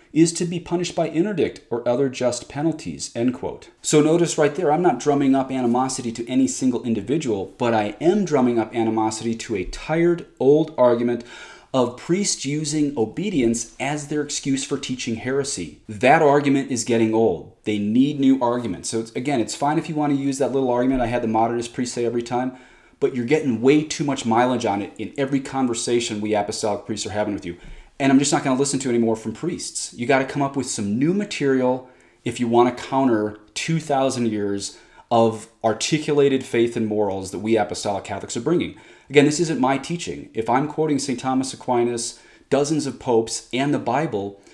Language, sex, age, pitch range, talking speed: English, male, 30-49, 115-145 Hz, 200 wpm